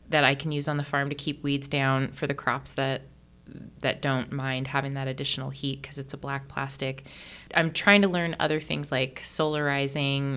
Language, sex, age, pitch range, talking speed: English, female, 20-39, 135-155 Hz, 205 wpm